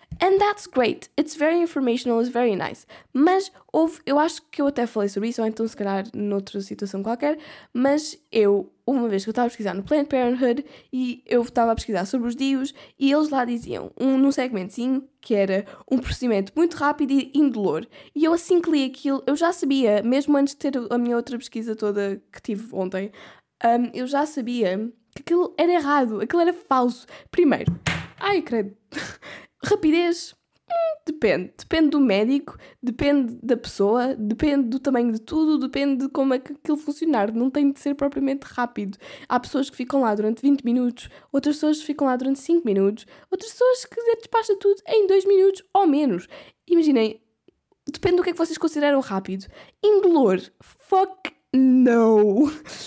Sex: female